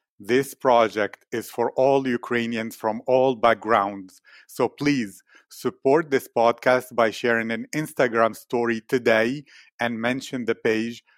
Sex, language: male, English